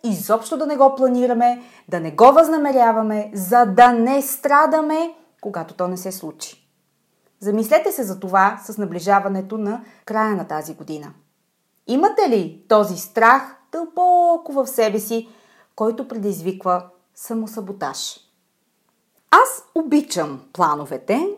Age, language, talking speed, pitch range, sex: 30-49, Bulgarian, 120 wpm, 200-275 Hz, female